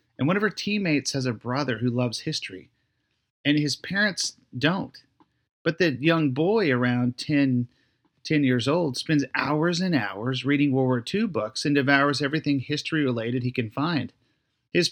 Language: English